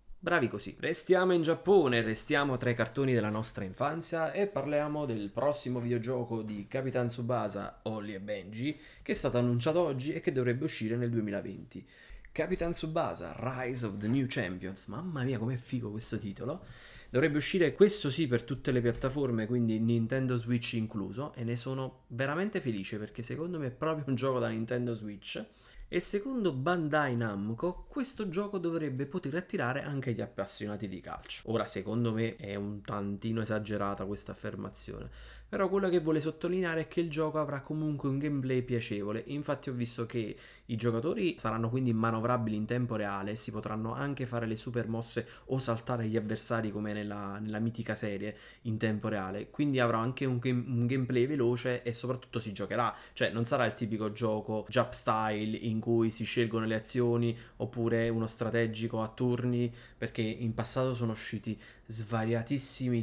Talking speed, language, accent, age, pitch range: 170 wpm, Italian, native, 20-39, 110-135 Hz